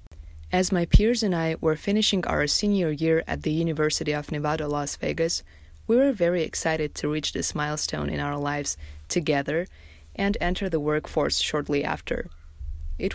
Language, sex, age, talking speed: English, female, 20-39, 165 wpm